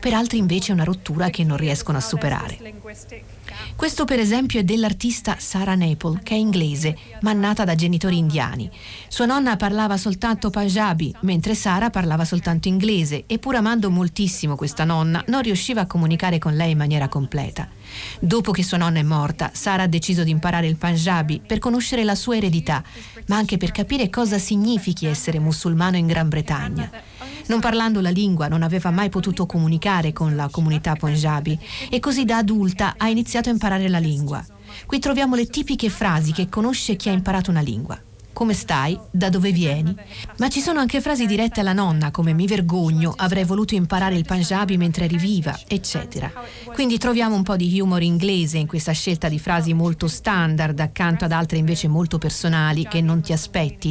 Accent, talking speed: native, 185 wpm